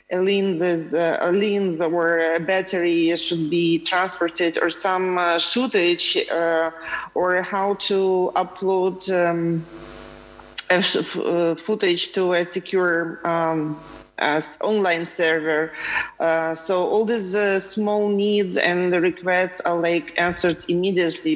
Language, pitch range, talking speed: German, 165-195 Hz, 120 wpm